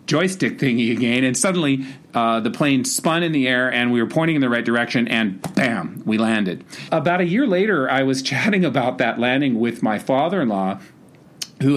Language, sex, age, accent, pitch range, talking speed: English, male, 40-59, American, 110-140 Hz, 195 wpm